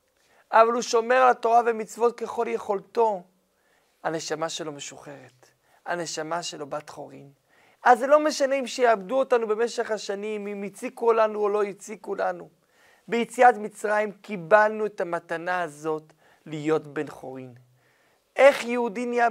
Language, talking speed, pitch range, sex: Hebrew, 135 wpm, 180-245 Hz, male